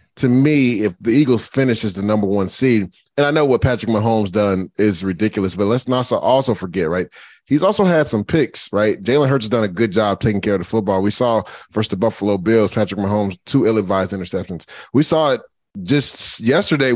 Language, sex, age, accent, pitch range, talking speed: English, male, 30-49, American, 110-160 Hz, 210 wpm